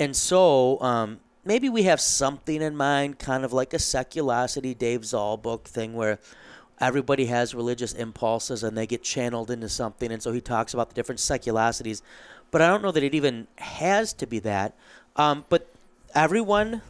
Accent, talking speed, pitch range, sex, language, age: American, 180 wpm, 115-135 Hz, male, English, 30-49